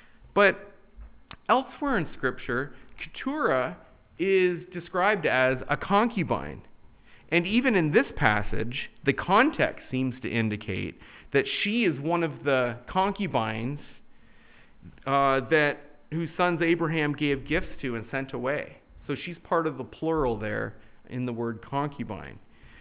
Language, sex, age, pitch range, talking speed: English, male, 40-59, 115-165 Hz, 130 wpm